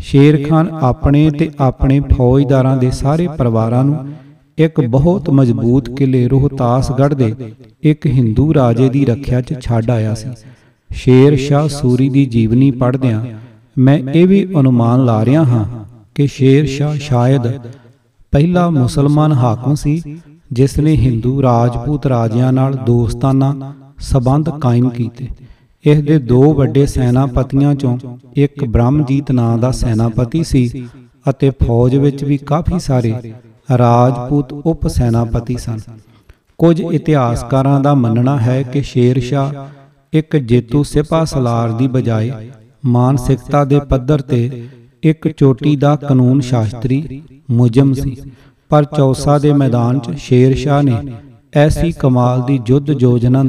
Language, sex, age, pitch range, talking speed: Punjabi, male, 40-59, 120-145 Hz, 130 wpm